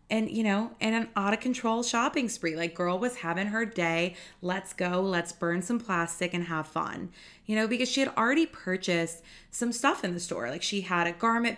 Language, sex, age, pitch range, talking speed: English, female, 20-39, 170-225 Hz, 205 wpm